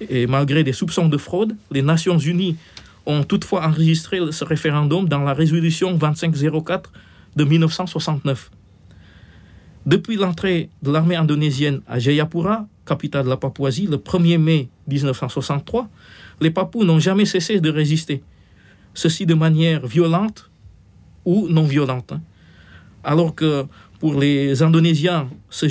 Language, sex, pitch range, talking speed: French, male, 130-170 Hz, 125 wpm